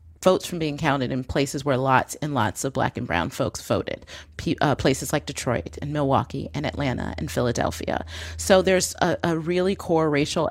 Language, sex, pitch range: English, female, 135-155 Hz